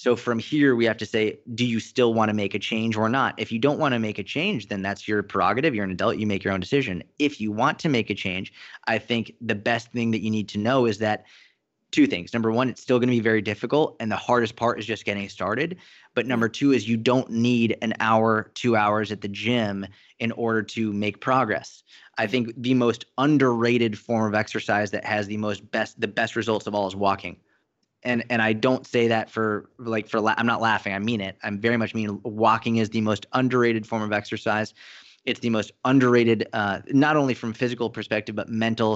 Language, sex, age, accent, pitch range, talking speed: English, male, 20-39, American, 105-120 Hz, 235 wpm